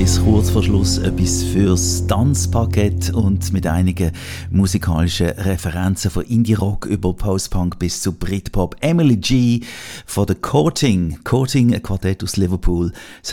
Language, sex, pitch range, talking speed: German, male, 90-115 Hz, 135 wpm